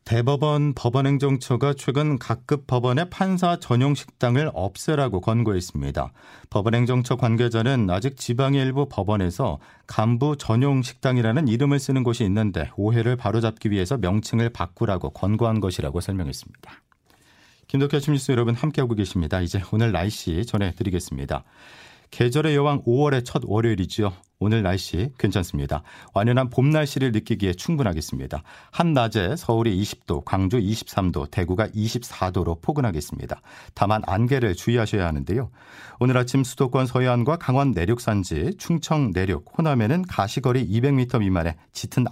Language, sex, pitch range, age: Korean, male, 95-130 Hz, 40-59